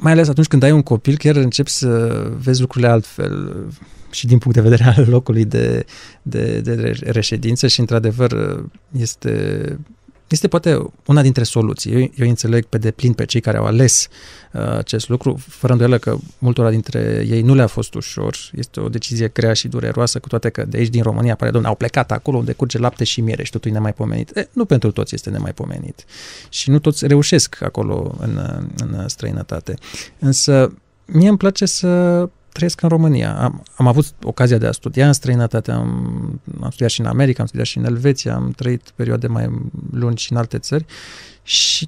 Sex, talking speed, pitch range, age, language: male, 190 wpm, 115-145 Hz, 20-39, Romanian